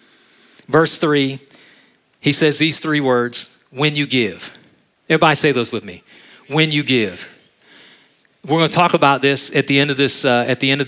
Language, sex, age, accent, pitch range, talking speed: English, male, 40-59, American, 145-200 Hz, 180 wpm